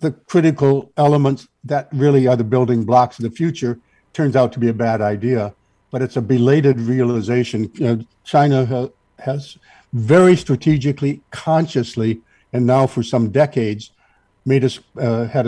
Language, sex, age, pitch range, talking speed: English, male, 60-79, 115-140 Hz, 145 wpm